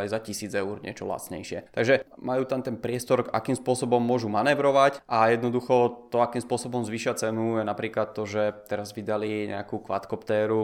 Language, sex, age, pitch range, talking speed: Czech, male, 20-39, 110-130 Hz, 165 wpm